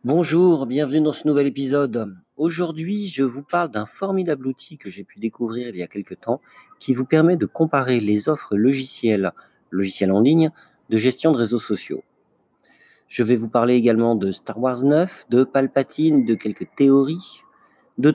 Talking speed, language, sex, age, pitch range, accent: 175 wpm, French, male, 40-59, 115-150 Hz, French